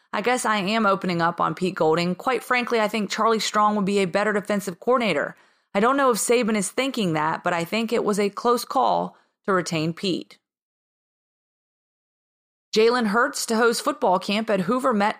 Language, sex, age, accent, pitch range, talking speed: English, female, 30-49, American, 200-245 Hz, 195 wpm